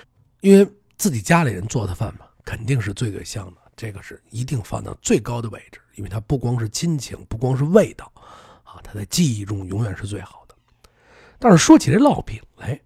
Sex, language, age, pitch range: male, Chinese, 50-69, 110-175 Hz